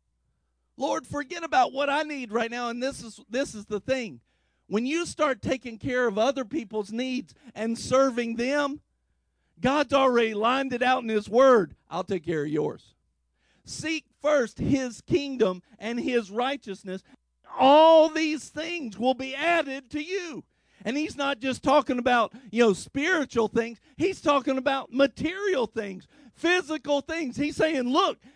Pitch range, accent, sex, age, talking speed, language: 215-290 Hz, American, male, 50-69, 160 wpm, English